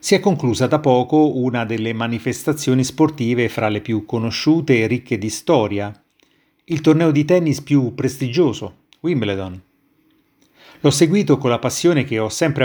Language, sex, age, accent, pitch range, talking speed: Italian, male, 30-49, native, 110-140 Hz, 150 wpm